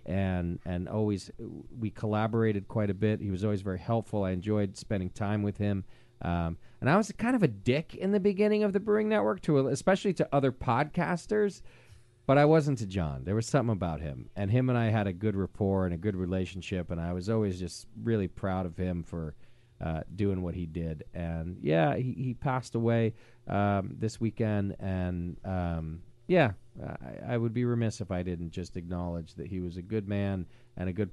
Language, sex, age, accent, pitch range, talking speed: English, male, 40-59, American, 90-120 Hz, 205 wpm